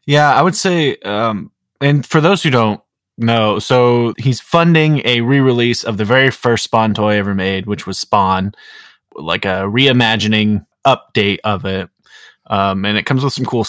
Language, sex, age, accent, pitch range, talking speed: English, male, 20-39, American, 105-130 Hz, 175 wpm